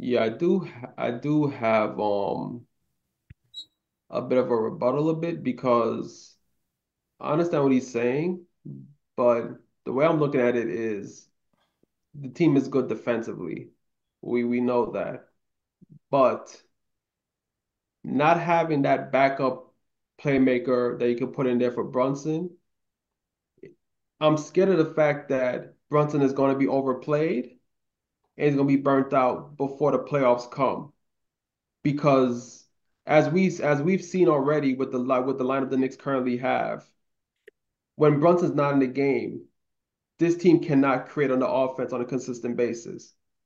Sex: male